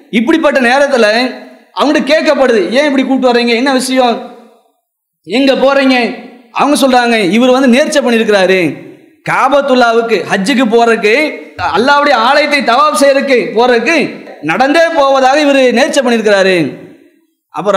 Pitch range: 240-290 Hz